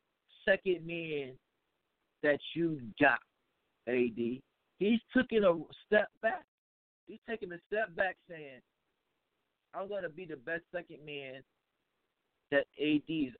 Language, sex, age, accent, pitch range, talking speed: English, male, 50-69, American, 150-200 Hz, 120 wpm